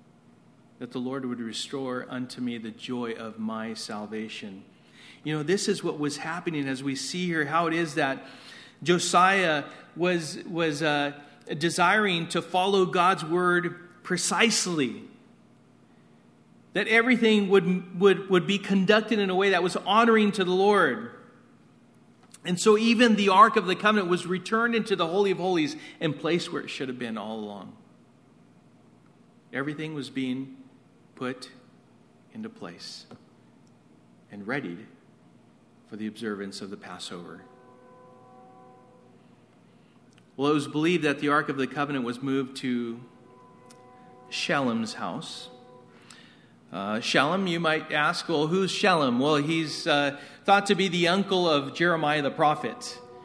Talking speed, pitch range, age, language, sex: 140 wpm, 130-185 Hz, 40-59, English, male